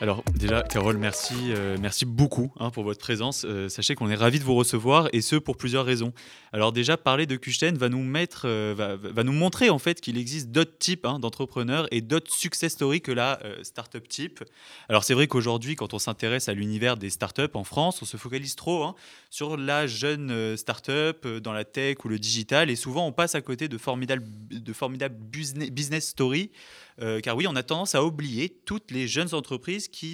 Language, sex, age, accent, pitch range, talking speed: French, male, 20-39, French, 110-150 Hz, 210 wpm